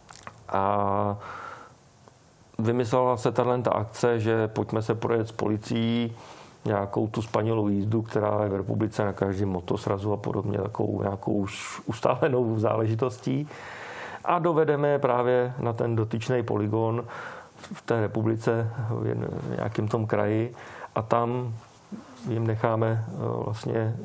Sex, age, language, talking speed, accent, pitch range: male, 40-59, Czech, 120 wpm, native, 105-115 Hz